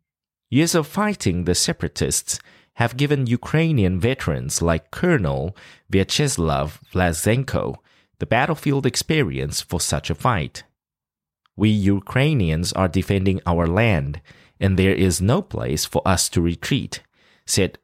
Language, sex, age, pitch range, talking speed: English, male, 30-49, 85-130 Hz, 120 wpm